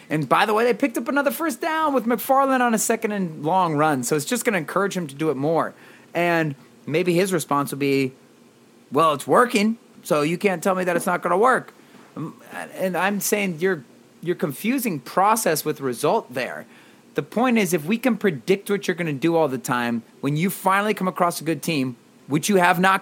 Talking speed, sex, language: 225 wpm, male, English